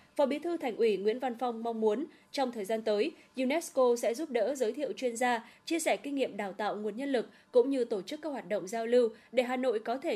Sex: female